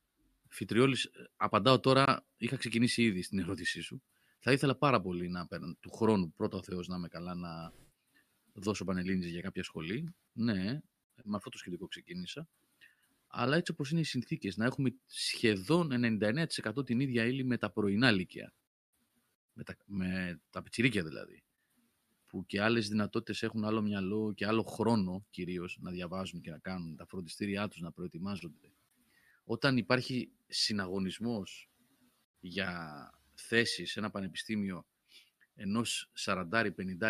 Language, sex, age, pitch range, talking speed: Greek, male, 30-49, 95-115 Hz, 140 wpm